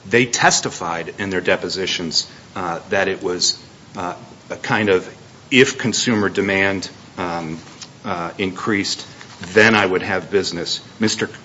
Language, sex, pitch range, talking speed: English, male, 100-130 Hz, 130 wpm